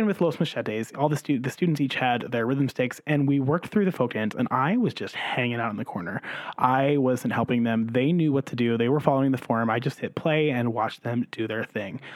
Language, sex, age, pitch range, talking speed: English, male, 30-49, 125-160 Hz, 260 wpm